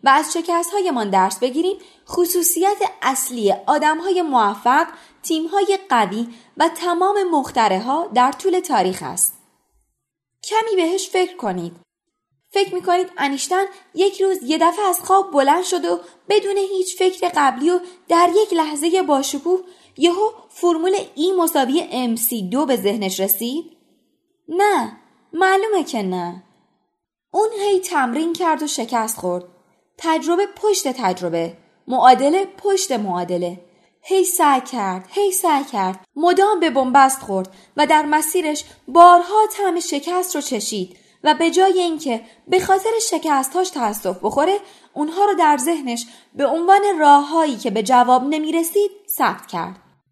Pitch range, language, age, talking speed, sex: 235-370 Hz, Persian, 20-39, 135 wpm, female